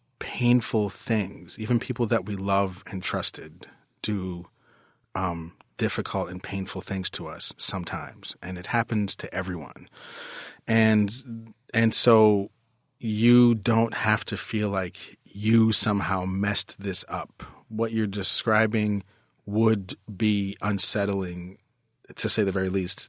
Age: 30-49